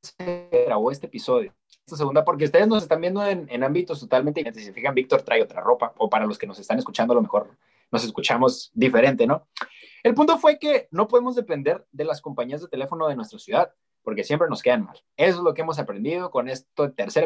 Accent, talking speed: Mexican, 220 wpm